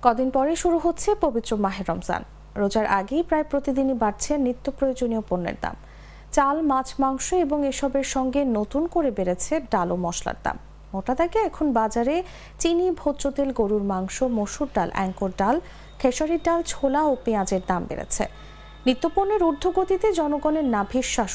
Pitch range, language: 210-315 Hz, English